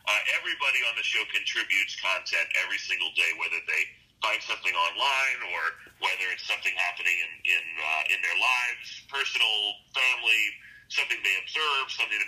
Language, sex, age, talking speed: English, male, 40-59, 160 wpm